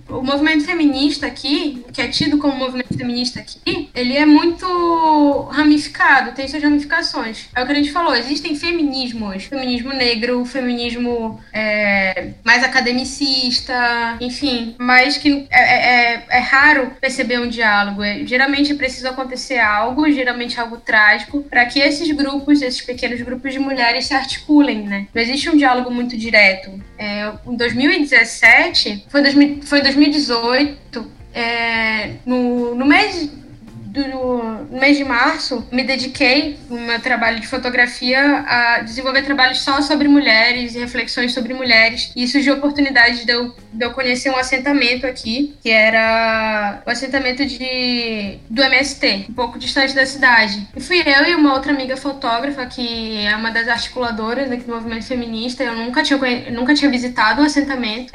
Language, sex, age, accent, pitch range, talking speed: Portuguese, female, 10-29, Brazilian, 240-280 Hz, 155 wpm